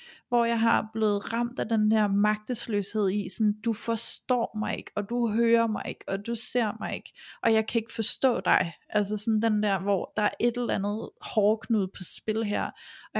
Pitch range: 195-220 Hz